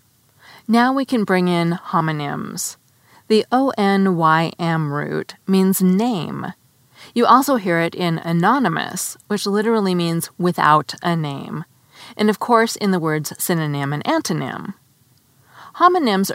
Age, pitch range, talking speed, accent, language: 30-49, 155-210 Hz, 130 wpm, American, English